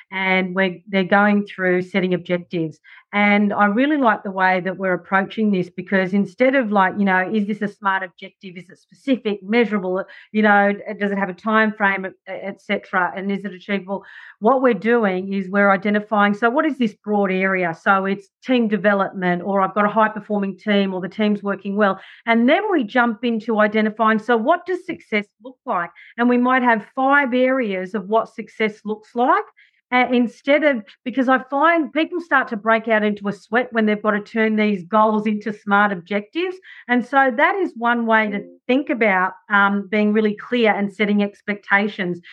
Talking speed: 190 wpm